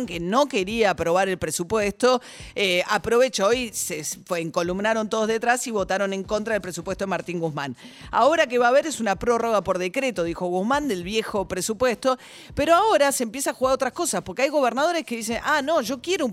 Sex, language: female, Spanish